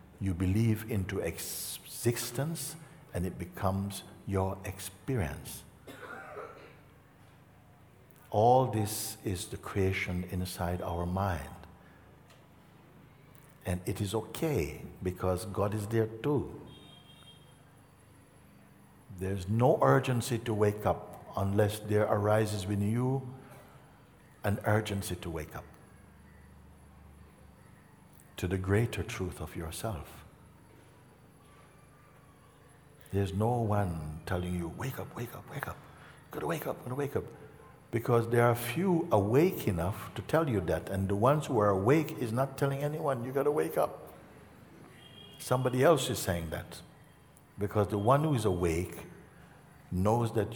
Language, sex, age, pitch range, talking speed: English, male, 60-79, 95-130 Hz, 120 wpm